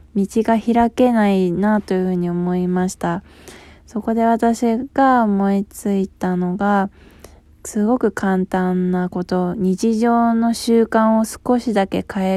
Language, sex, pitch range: Japanese, female, 180-215 Hz